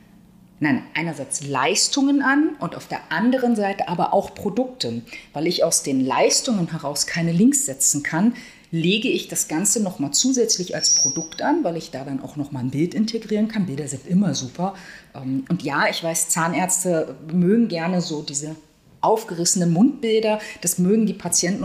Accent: German